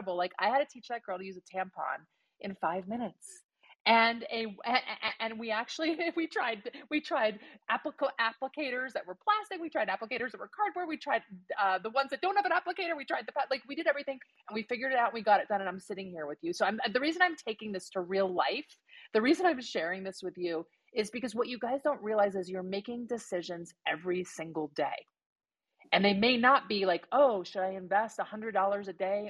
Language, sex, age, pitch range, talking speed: English, female, 30-49, 190-250 Hz, 230 wpm